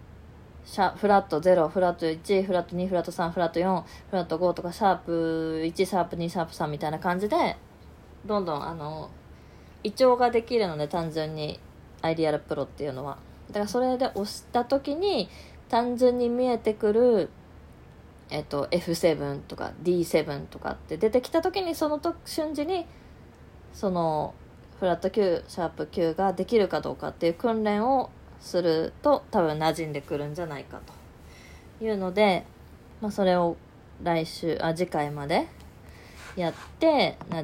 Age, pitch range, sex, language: 20-39, 155-210 Hz, female, Japanese